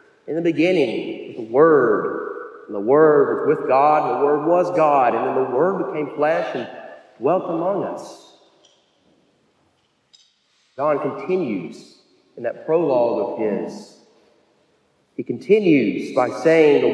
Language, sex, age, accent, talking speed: English, male, 40-59, American, 135 wpm